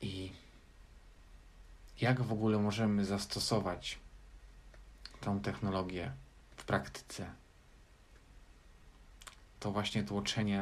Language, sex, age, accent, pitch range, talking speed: Polish, male, 40-59, native, 80-110 Hz, 75 wpm